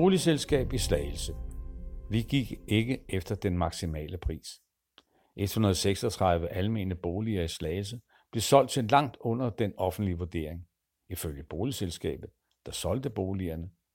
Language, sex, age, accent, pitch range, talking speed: Danish, male, 60-79, native, 85-115 Hz, 120 wpm